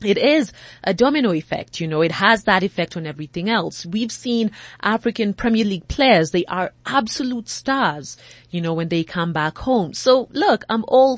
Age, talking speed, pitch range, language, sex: 30-49, 190 wpm, 170-235 Hz, English, female